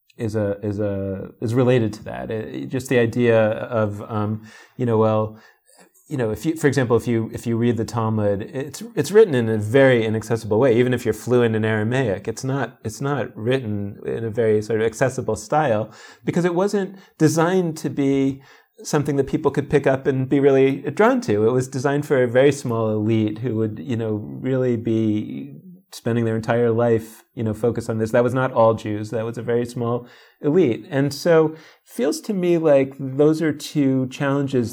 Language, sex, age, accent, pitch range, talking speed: English, male, 30-49, American, 110-135 Hz, 200 wpm